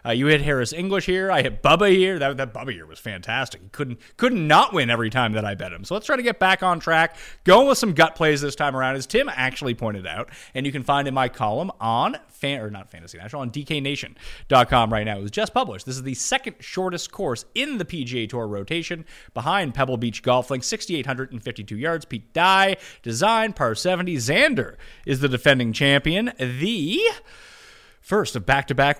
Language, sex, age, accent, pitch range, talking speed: English, male, 30-49, American, 125-190 Hz, 220 wpm